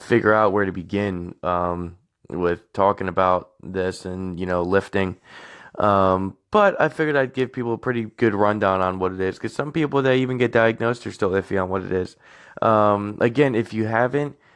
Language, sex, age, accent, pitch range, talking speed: English, male, 20-39, American, 95-115 Hz, 200 wpm